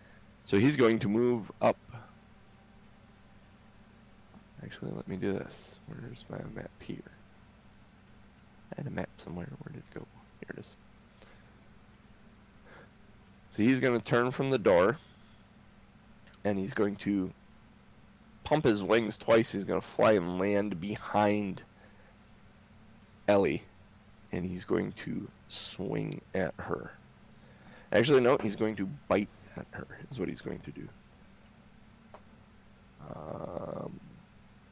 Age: 20-39